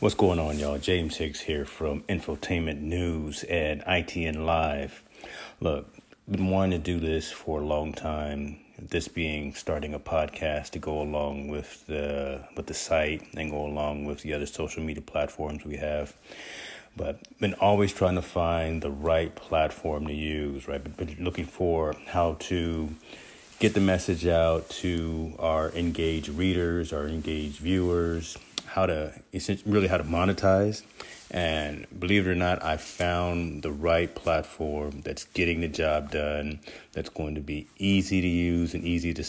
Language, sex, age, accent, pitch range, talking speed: English, male, 30-49, American, 75-90 Hz, 160 wpm